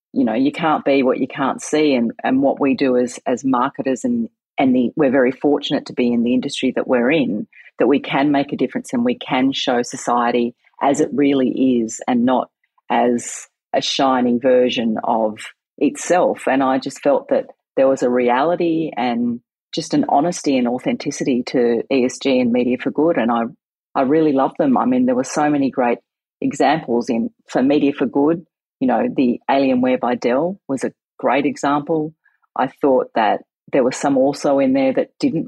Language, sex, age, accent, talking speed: English, female, 40-59, Australian, 195 wpm